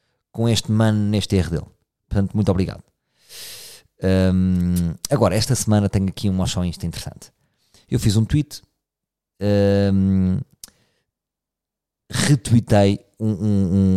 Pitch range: 95-125 Hz